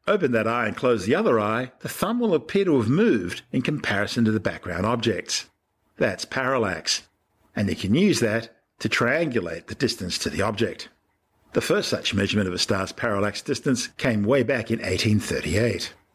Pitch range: 100-130 Hz